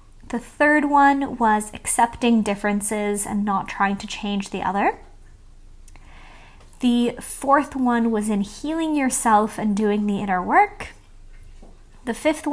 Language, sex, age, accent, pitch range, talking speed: English, female, 20-39, American, 205-250 Hz, 130 wpm